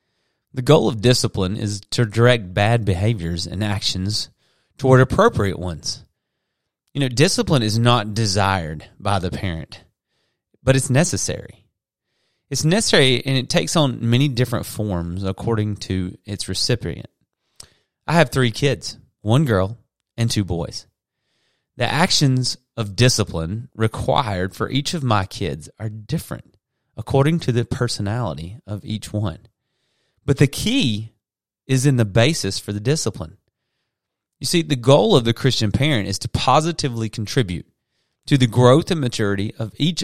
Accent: American